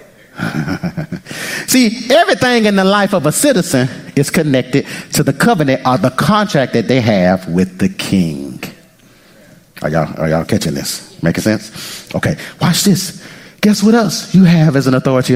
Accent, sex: American, male